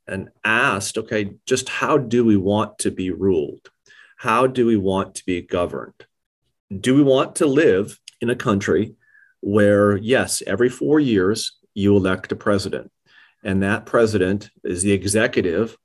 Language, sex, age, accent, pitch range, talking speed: English, male, 40-59, American, 95-115 Hz, 155 wpm